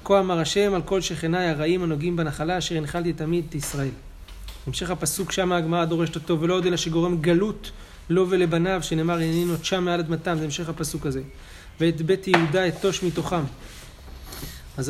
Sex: male